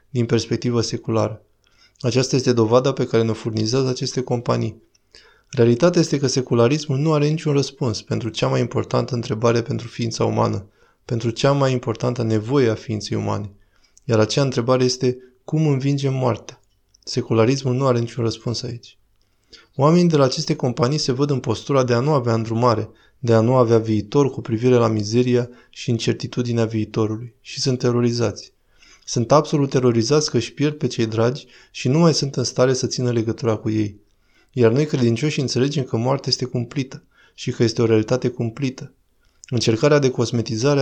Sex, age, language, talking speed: male, 20-39, Romanian, 170 wpm